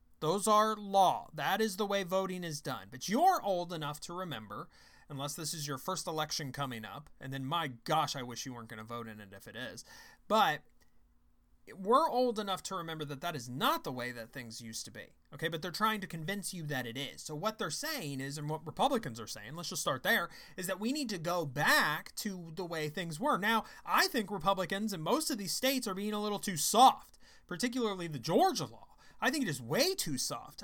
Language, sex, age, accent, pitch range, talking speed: English, male, 30-49, American, 135-200 Hz, 235 wpm